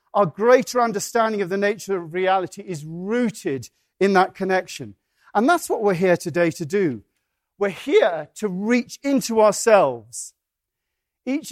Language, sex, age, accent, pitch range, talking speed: English, male, 40-59, British, 175-240 Hz, 145 wpm